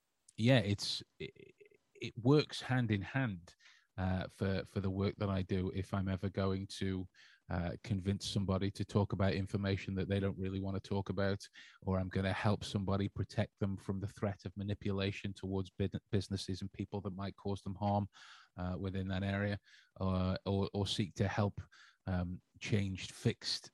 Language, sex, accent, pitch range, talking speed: English, male, British, 95-105 Hz, 175 wpm